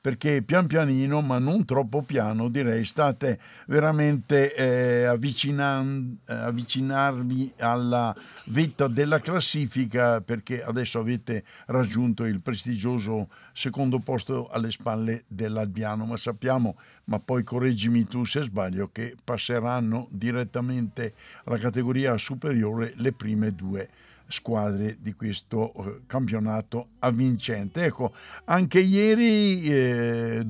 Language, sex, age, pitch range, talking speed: Italian, male, 60-79, 115-135 Hz, 105 wpm